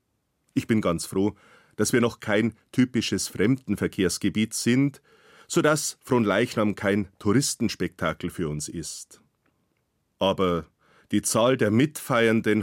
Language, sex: German, male